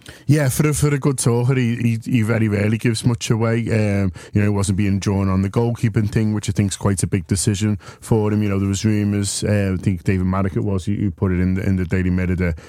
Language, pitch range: English, 95-110 Hz